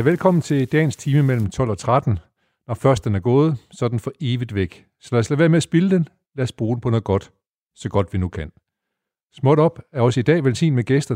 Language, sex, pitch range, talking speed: Danish, male, 110-145 Hz, 260 wpm